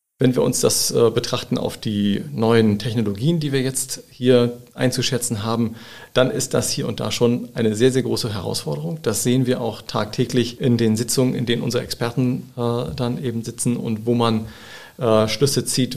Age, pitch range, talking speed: 40-59, 115-125 Hz, 185 wpm